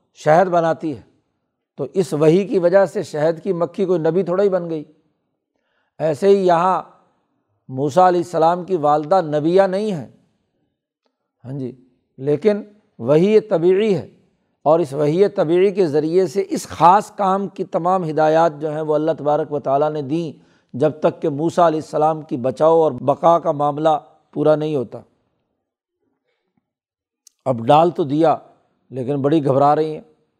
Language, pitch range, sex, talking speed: Urdu, 150-175 Hz, male, 160 wpm